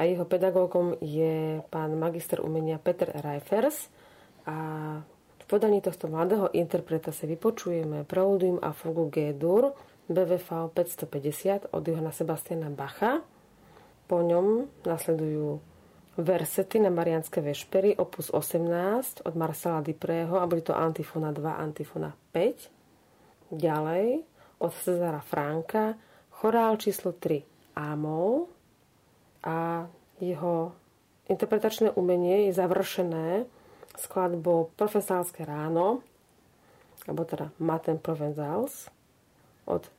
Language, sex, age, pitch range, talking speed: Slovak, female, 30-49, 155-185 Hz, 105 wpm